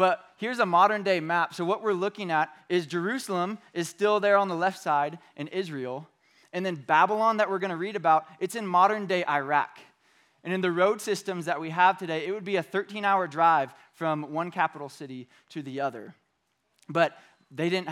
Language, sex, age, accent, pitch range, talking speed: English, male, 20-39, American, 155-195 Hz, 200 wpm